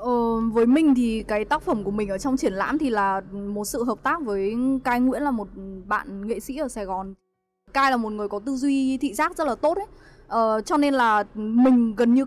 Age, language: 10-29, English